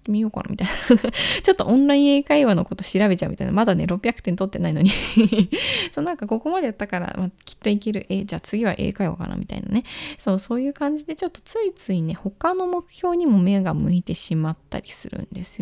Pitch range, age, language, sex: 190-260 Hz, 20-39, Japanese, female